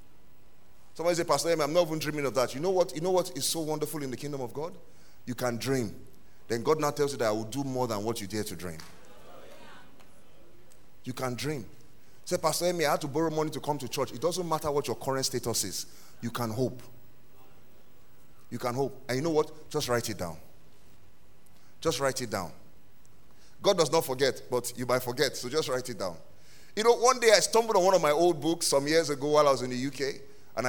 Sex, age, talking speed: male, 30-49, 235 wpm